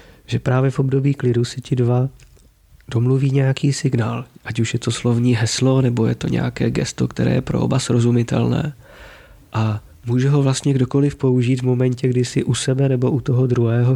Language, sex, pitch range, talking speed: Slovak, male, 115-130 Hz, 185 wpm